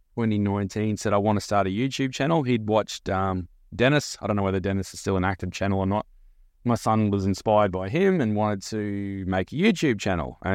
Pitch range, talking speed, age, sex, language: 95-110 Hz, 220 wpm, 20-39, male, English